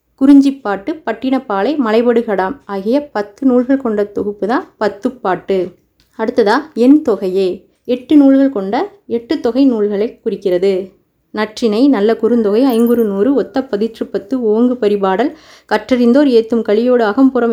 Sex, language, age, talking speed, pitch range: female, Tamil, 20-39, 120 wpm, 210-260 Hz